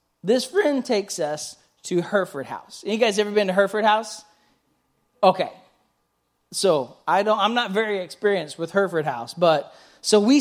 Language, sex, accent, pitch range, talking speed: English, male, American, 170-225 Hz, 165 wpm